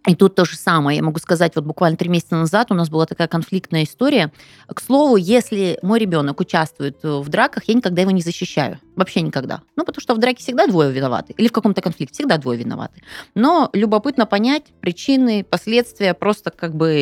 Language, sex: Russian, female